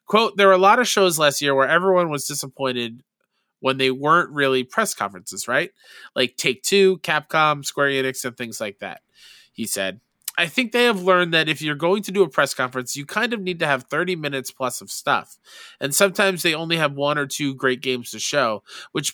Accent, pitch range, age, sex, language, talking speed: American, 130-190 Hz, 20-39, male, English, 215 wpm